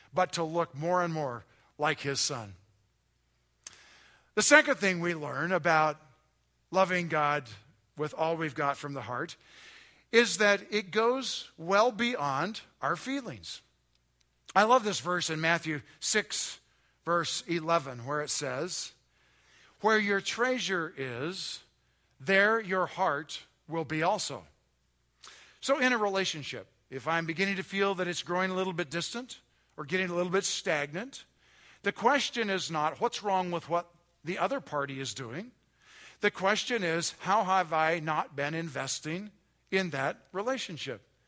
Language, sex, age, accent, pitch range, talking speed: English, male, 50-69, American, 145-195 Hz, 145 wpm